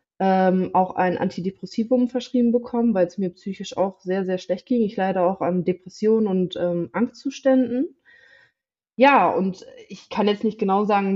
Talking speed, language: 165 wpm, German